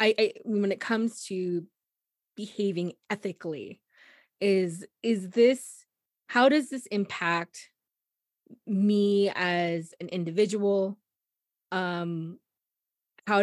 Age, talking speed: 20-39, 95 wpm